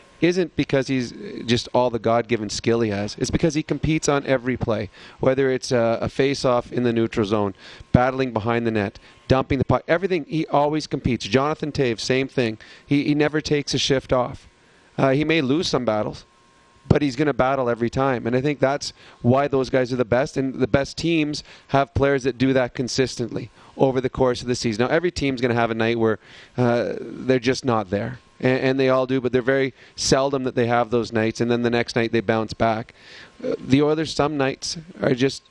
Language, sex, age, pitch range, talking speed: English, male, 30-49, 120-140 Hz, 220 wpm